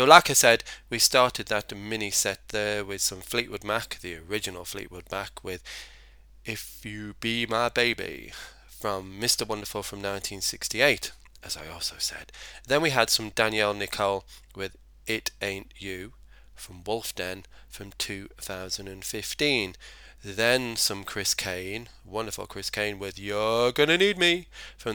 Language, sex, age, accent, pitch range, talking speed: English, male, 20-39, British, 95-110 Hz, 145 wpm